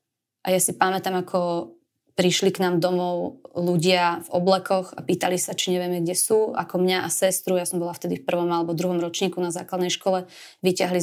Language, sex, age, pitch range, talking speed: Slovak, female, 20-39, 175-190 Hz, 195 wpm